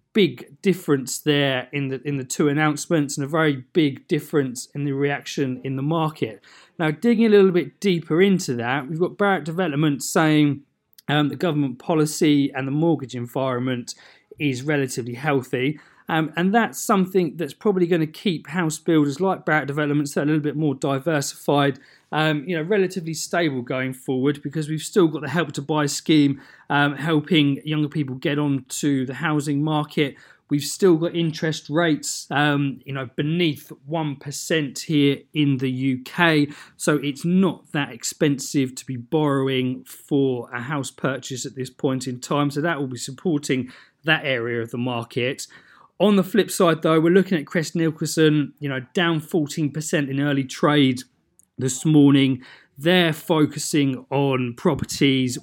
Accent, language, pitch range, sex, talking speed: British, English, 135-160 Hz, male, 165 wpm